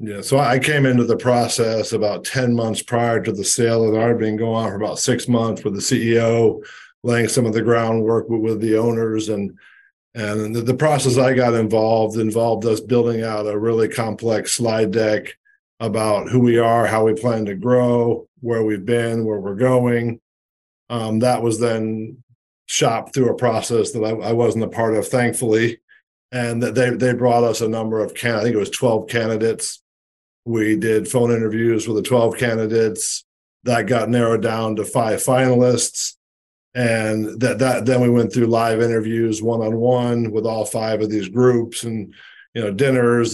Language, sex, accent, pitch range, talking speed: English, male, American, 110-120 Hz, 185 wpm